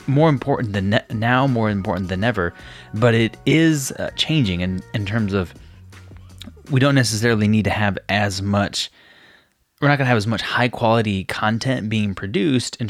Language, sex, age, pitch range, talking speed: English, male, 20-39, 100-130 Hz, 180 wpm